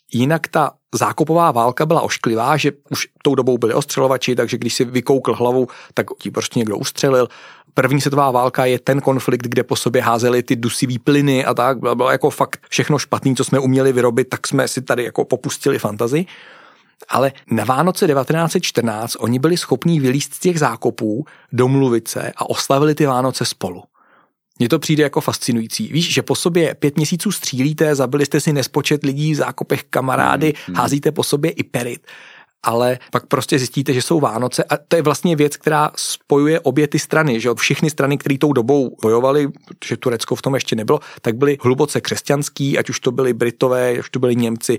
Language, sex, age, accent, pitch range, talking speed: Czech, male, 40-59, native, 125-145 Hz, 190 wpm